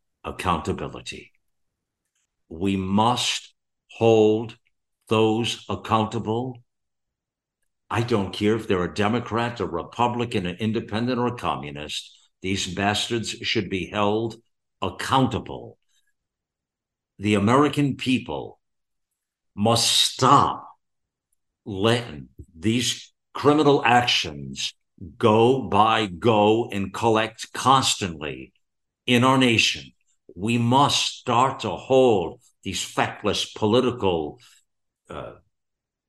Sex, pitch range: male, 100-125 Hz